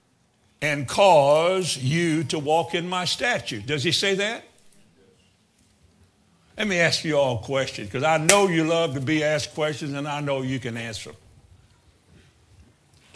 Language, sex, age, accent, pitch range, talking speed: English, male, 60-79, American, 125-180 Hz, 160 wpm